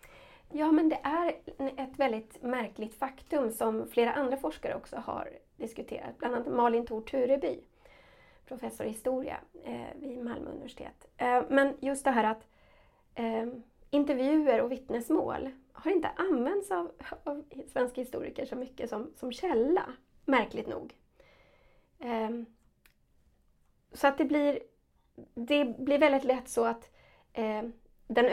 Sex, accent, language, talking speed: female, native, Swedish, 120 wpm